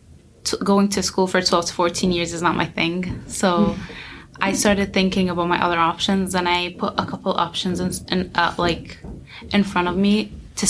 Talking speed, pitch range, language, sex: 195 wpm, 170-190 Hz, English, female